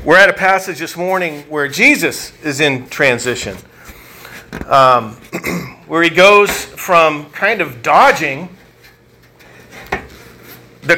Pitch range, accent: 140-180 Hz, American